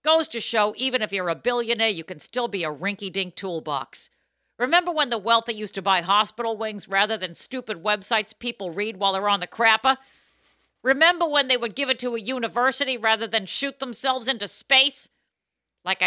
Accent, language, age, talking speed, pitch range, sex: American, English, 50-69, 190 wpm, 195-275 Hz, female